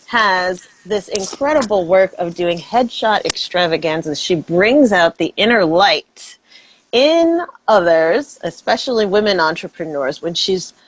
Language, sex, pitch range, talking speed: English, female, 170-245 Hz, 115 wpm